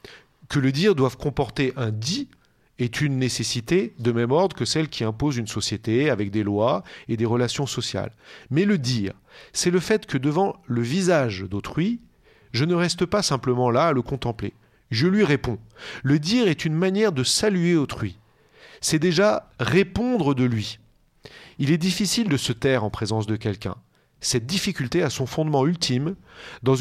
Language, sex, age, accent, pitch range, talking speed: French, male, 40-59, French, 115-170 Hz, 180 wpm